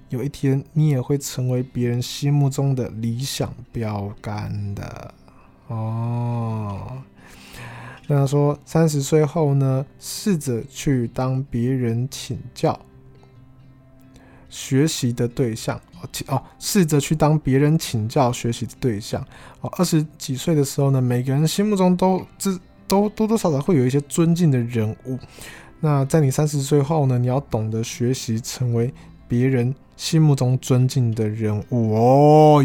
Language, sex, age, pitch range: Chinese, male, 20-39, 120-150 Hz